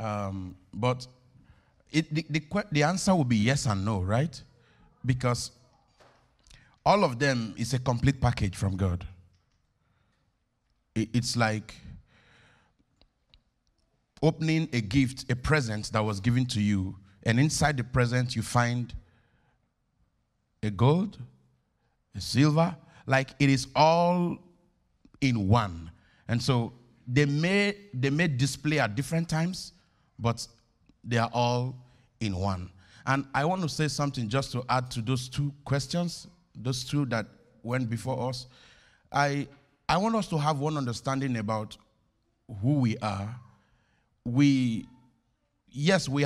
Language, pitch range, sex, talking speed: English, 115-145 Hz, male, 130 wpm